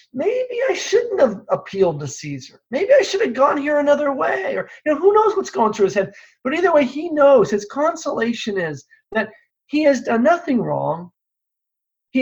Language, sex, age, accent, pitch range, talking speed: English, male, 40-59, American, 180-290 Hz, 195 wpm